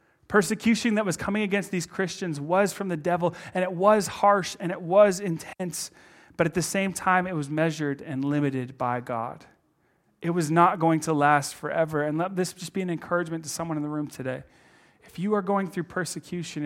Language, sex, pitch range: English, male, 155-195 Hz